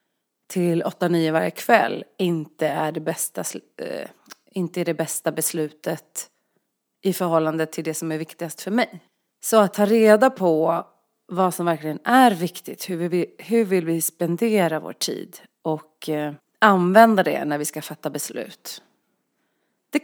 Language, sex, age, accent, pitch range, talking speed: Swedish, female, 30-49, native, 165-225 Hz, 150 wpm